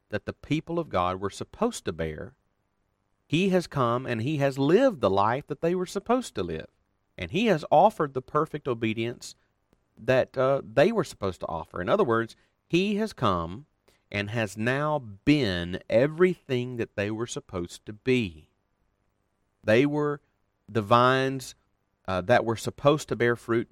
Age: 40-59